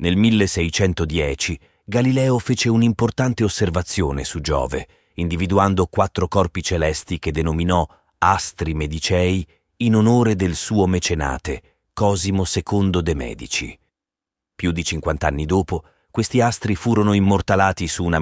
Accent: native